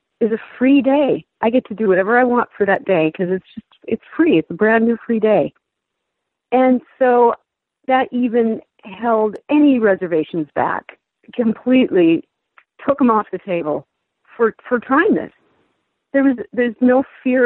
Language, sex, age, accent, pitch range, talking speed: English, female, 50-69, American, 190-245 Hz, 165 wpm